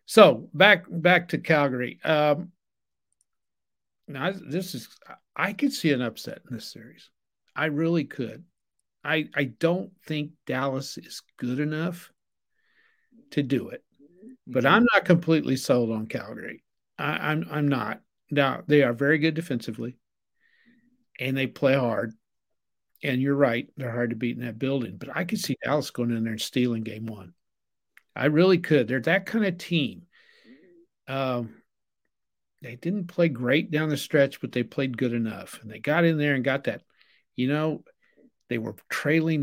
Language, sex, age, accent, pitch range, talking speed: English, male, 50-69, American, 125-170 Hz, 165 wpm